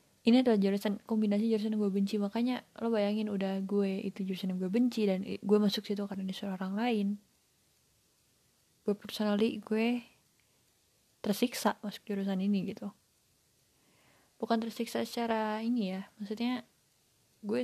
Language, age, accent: Indonesian, 20-39, native